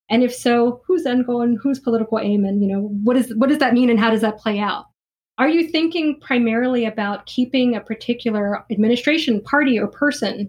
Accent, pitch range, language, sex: American, 220-285 Hz, English, female